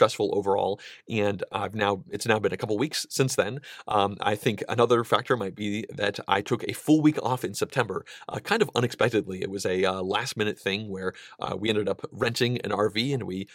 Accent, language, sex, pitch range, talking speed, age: American, English, male, 100-125 Hz, 215 wpm, 30-49